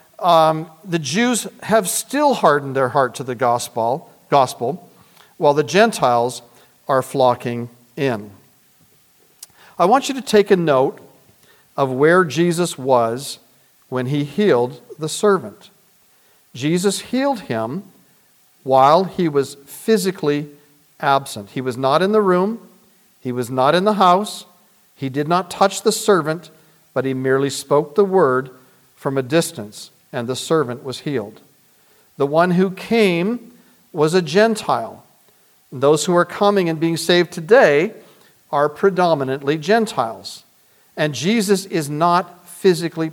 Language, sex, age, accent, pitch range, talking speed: English, male, 50-69, American, 135-190 Hz, 135 wpm